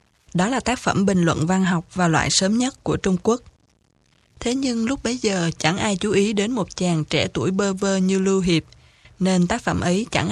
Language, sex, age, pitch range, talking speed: Vietnamese, female, 20-39, 180-230 Hz, 225 wpm